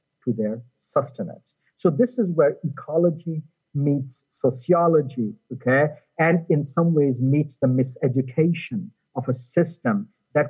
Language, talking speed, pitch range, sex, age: English, 125 wpm, 125-165 Hz, male, 50-69